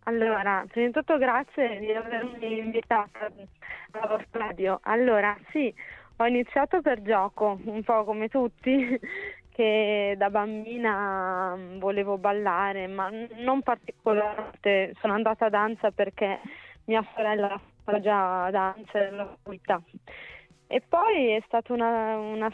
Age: 20-39